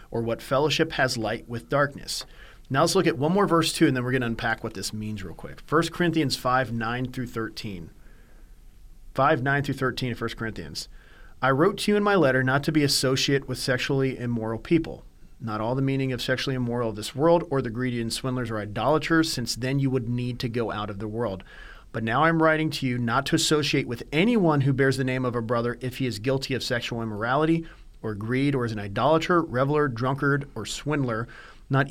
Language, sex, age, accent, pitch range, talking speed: English, male, 40-59, American, 120-150 Hz, 220 wpm